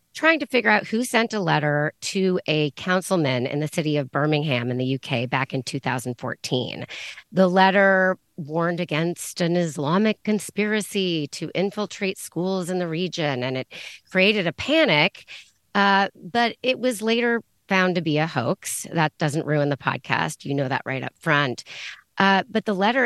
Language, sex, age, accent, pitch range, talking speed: English, female, 30-49, American, 140-185 Hz, 170 wpm